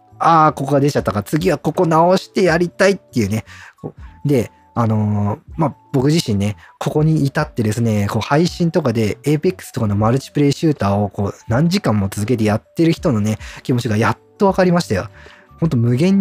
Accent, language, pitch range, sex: native, Japanese, 105-165 Hz, male